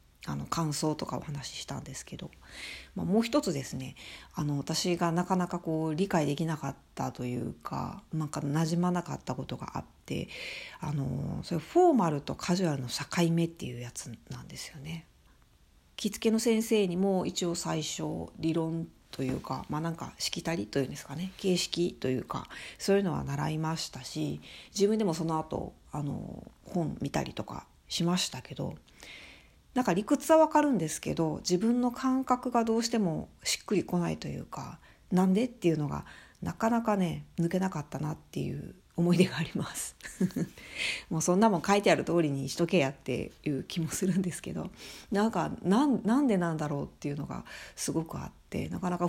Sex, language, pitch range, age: female, Japanese, 155-205 Hz, 40-59